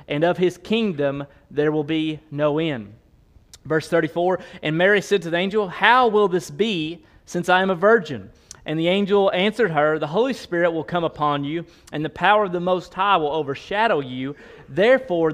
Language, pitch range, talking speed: English, 150-200 Hz, 190 wpm